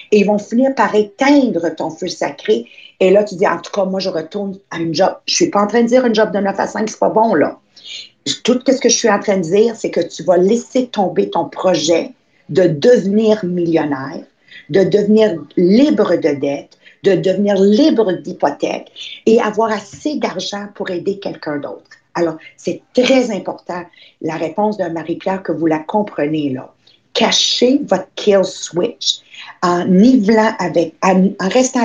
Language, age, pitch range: English, 50-69, 175-230 Hz